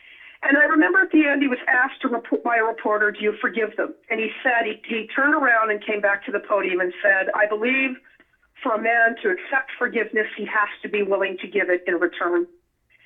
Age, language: 50-69, English